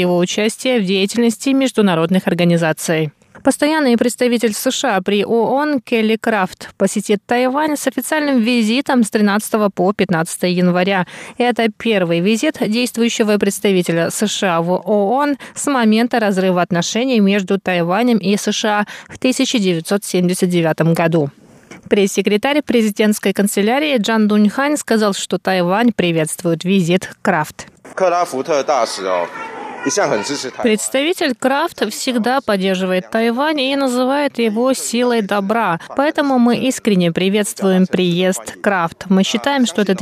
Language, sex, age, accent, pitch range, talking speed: Russian, female, 20-39, native, 185-245 Hz, 110 wpm